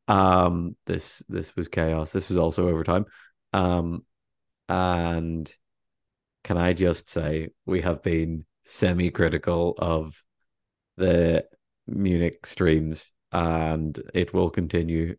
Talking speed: 110 wpm